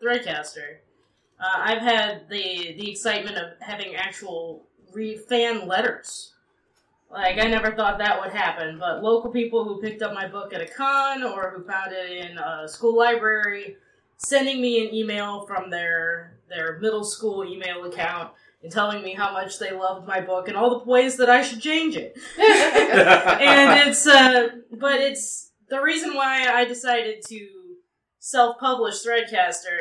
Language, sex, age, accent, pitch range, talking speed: English, female, 20-39, American, 180-240 Hz, 165 wpm